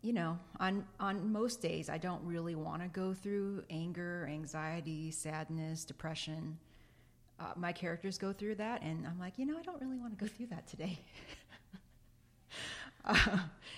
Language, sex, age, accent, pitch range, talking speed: English, female, 30-49, American, 160-190 Hz, 165 wpm